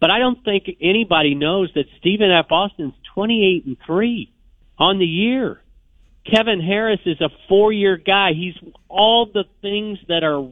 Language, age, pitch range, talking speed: English, 50-69, 150-195 Hz, 165 wpm